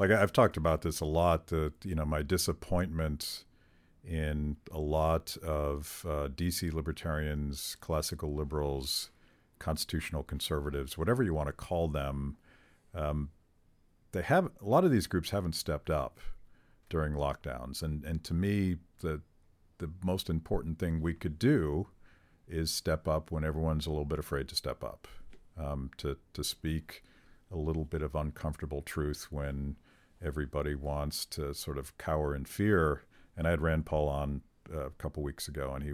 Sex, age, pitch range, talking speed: male, 50-69, 75-85 Hz, 160 wpm